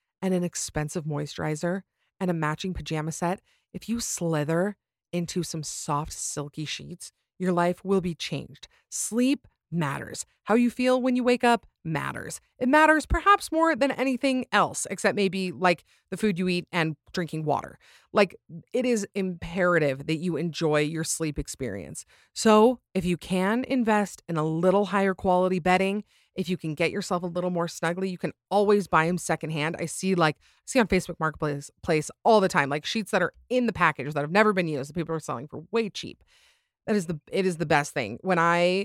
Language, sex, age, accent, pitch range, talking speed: English, female, 30-49, American, 155-195 Hz, 195 wpm